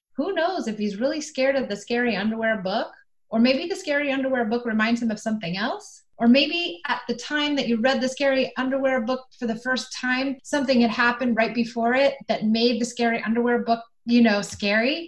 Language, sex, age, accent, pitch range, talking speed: English, female, 30-49, American, 205-260 Hz, 210 wpm